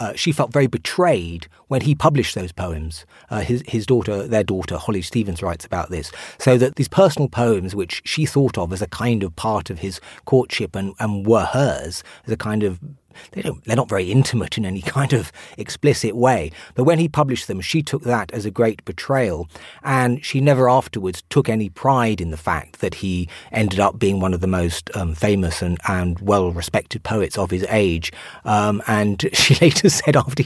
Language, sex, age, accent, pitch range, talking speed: English, male, 40-59, British, 95-135 Hz, 200 wpm